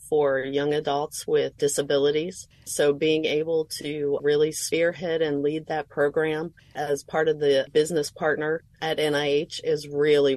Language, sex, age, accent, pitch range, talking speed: English, female, 30-49, American, 140-165 Hz, 145 wpm